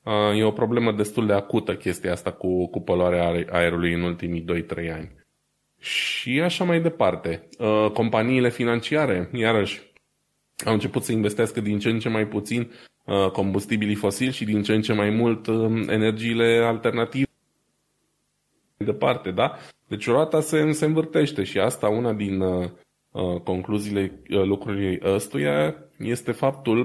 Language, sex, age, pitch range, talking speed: Romanian, male, 20-39, 95-125 Hz, 125 wpm